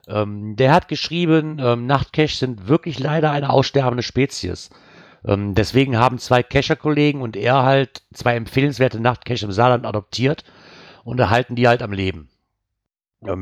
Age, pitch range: 50-69, 100-130 Hz